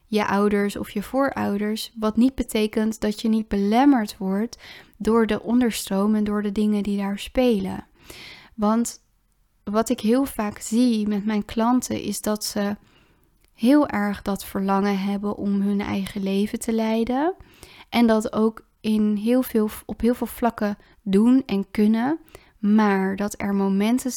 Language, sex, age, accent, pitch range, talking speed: Dutch, female, 20-39, Dutch, 200-230 Hz, 150 wpm